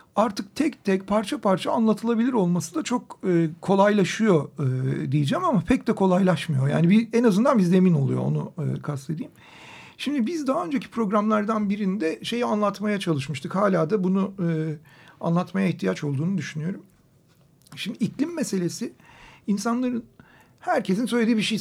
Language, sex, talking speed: Turkish, male, 135 wpm